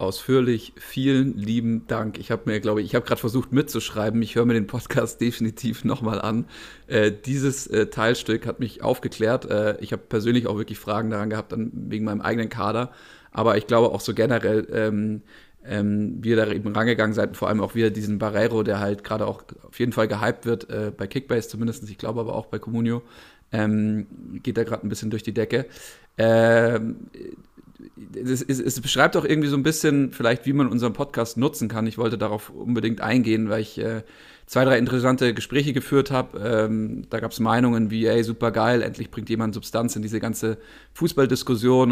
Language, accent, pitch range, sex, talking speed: German, German, 110-120 Hz, male, 200 wpm